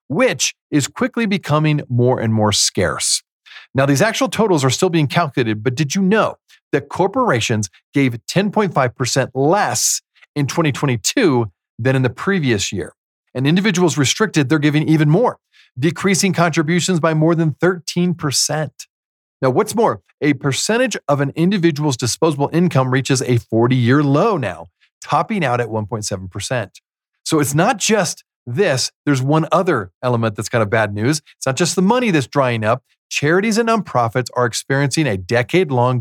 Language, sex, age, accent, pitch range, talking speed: English, male, 40-59, American, 120-165 Hz, 155 wpm